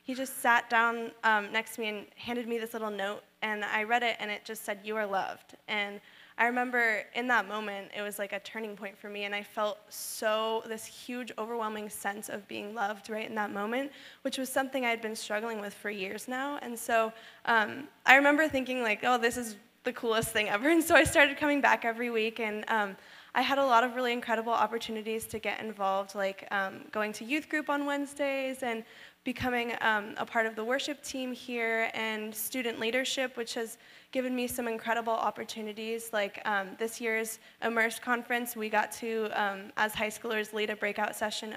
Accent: American